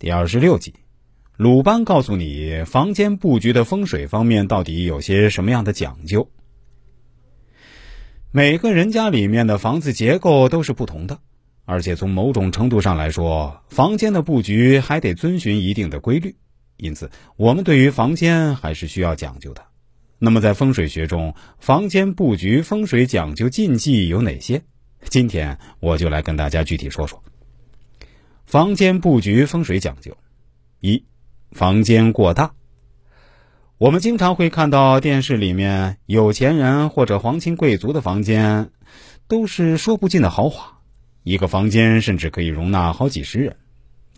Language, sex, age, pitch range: Chinese, male, 30-49, 90-135 Hz